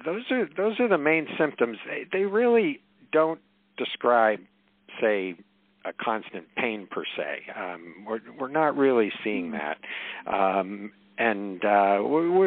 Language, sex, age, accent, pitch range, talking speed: English, male, 50-69, American, 95-135 Hz, 140 wpm